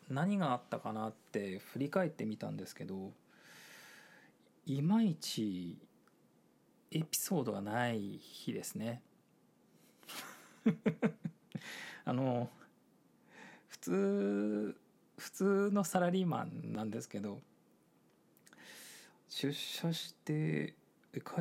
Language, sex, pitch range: Japanese, male, 115-190 Hz